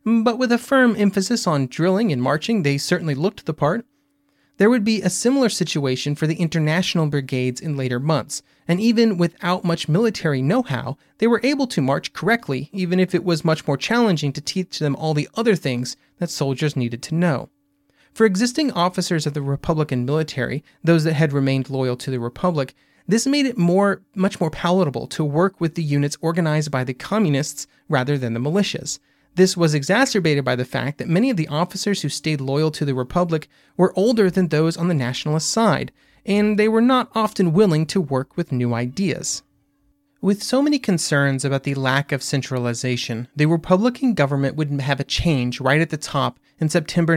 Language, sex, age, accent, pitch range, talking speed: English, male, 30-49, American, 140-190 Hz, 190 wpm